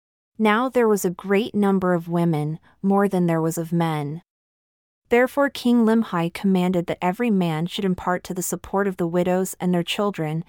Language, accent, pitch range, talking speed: English, American, 175-205 Hz, 185 wpm